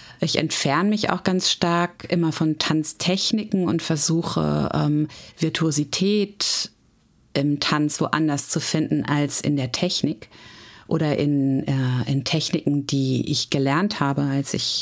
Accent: German